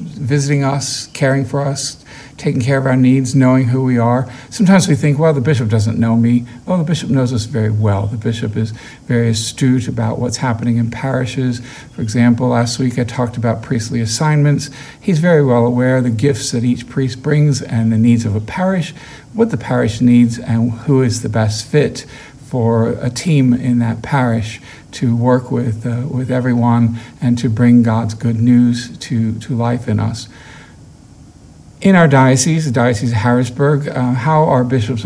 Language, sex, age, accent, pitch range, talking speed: English, male, 50-69, American, 120-135 Hz, 190 wpm